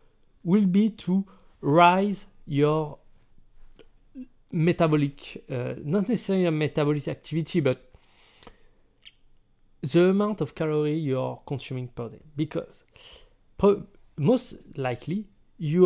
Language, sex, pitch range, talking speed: English, male, 135-190 Hz, 100 wpm